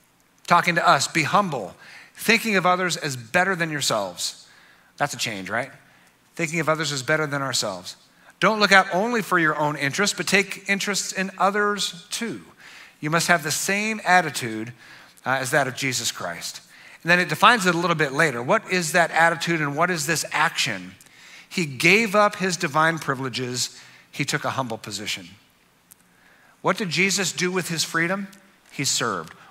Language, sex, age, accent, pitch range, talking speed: English, male, 50-69, American, 150-195 Hz, 175 wpm